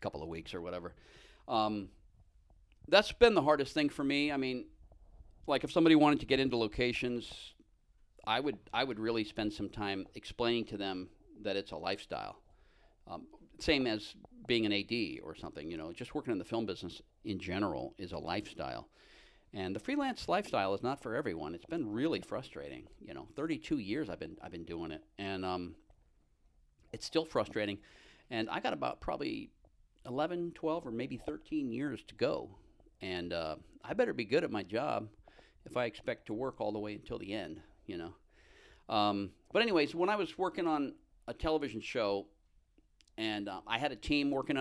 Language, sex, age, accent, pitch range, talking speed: English, male, 40-59, American, 100-140 Hz, 185 wpm